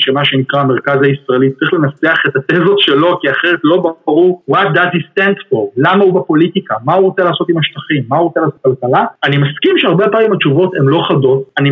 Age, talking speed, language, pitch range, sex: 30-49, 215 wpm, Hebrew, 140-190 Hz, male